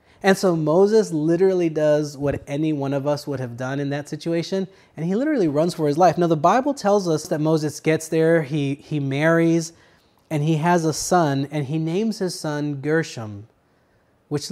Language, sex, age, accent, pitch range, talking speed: English, male, 20-39, American, 130-155 Hz, 195 wpm